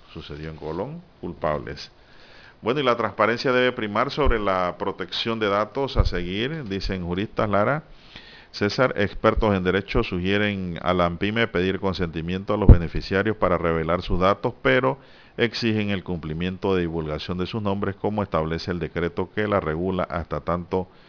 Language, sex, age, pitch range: Spanish, male, 50-69, 85-110 Hz